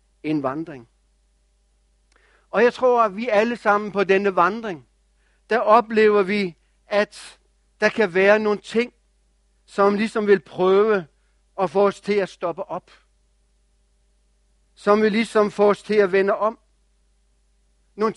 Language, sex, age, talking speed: English, male, 60-79, 140 wpm